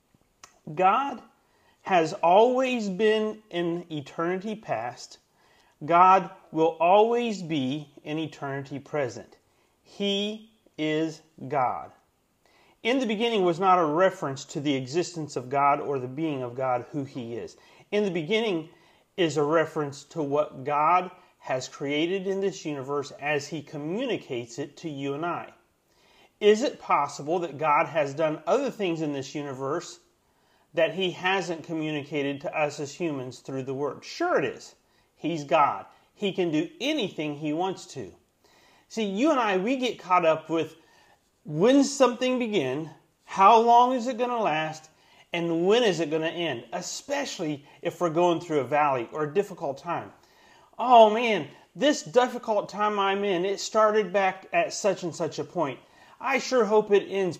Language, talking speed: English, 160 wpm